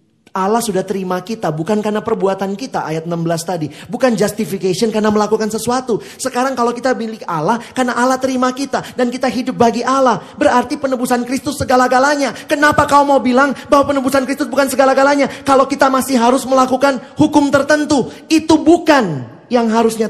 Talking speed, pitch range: 160 wpm, 135-225 Hz